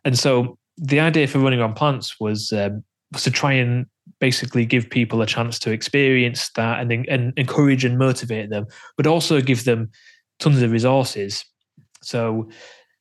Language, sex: English, male